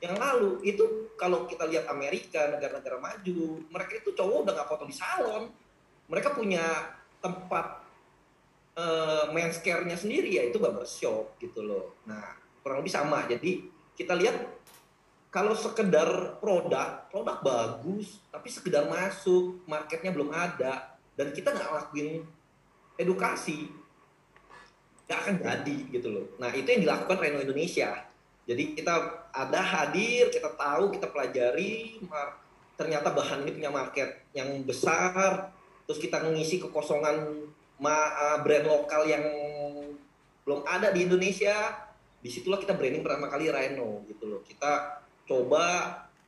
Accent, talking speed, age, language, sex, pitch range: native, 125 wpm, 30-49, Indonesian, male, 150-205 Hz